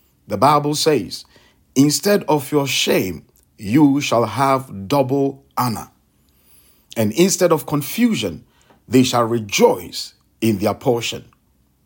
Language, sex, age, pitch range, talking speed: English, male, 50-69, 110-150 Hz, 110 wpm